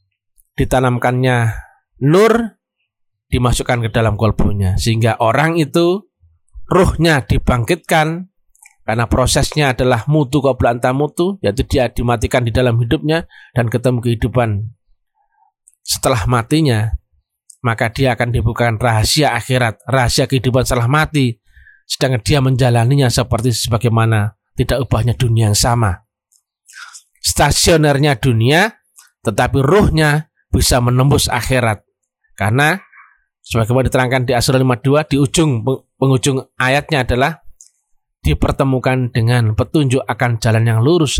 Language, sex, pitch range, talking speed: Indonesian, male, 115-140 Hz, 105 wpm